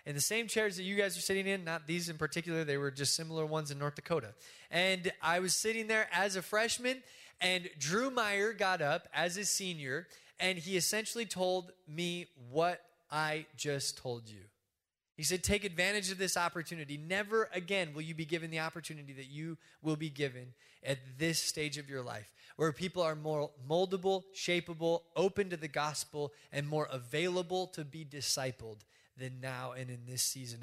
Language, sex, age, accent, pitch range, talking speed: English, male, 20-39, American, 140-185 Hz, 190 wpm